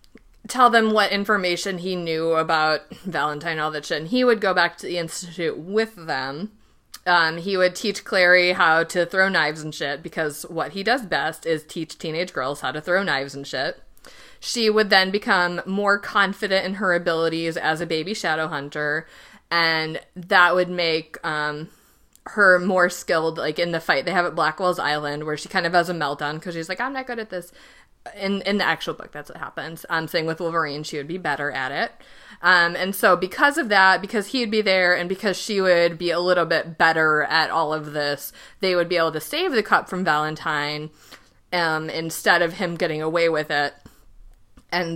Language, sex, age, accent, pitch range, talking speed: English, female, 30-49, American, 160-185 Hz, 205 wpm